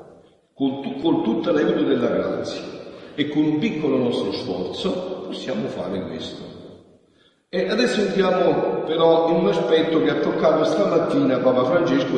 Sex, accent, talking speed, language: male, native, 135 wpm, Italian